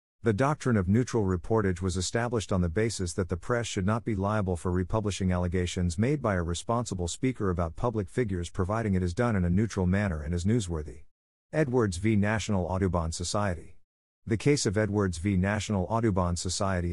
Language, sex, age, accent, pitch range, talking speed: English, male, 50-69, American, 90-115 Hz, 185 wpm